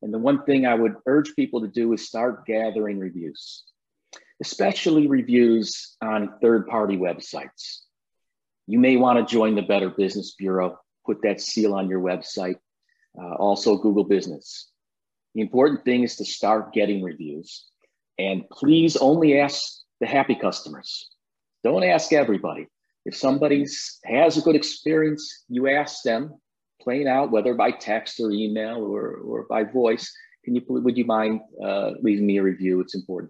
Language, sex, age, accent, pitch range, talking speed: English, male, 40-59, American, 100-135 Hz, 155 wpm